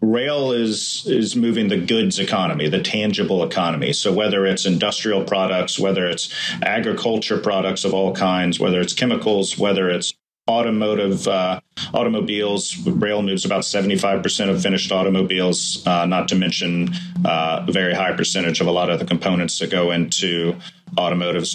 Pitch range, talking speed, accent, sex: 90-110 Hz, 160 wpm, American, male